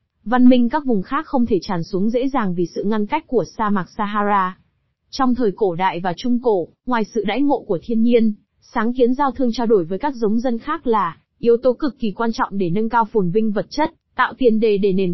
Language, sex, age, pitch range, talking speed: Vietnamese, female, 20-39, 195-250 Hz, 250 wpm